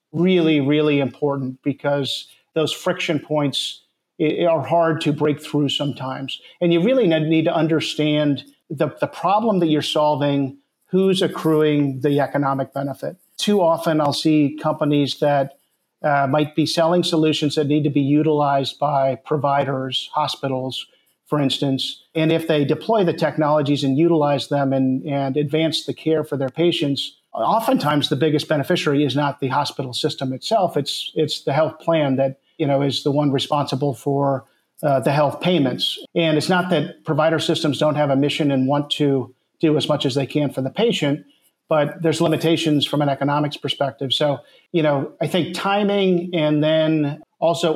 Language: English